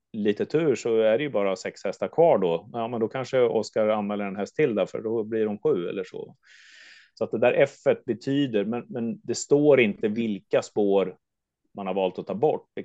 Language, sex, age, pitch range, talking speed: Swedish, male, 30-49, 100-125 Hz, 225 wpm